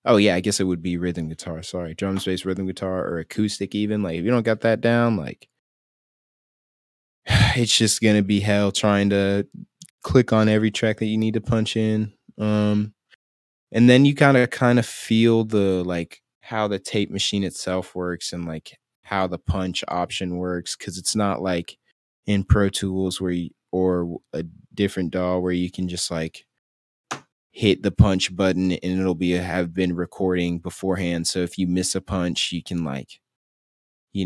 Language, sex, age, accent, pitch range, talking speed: English, male, 20-39, American, 85-105 Hz, 180 wpm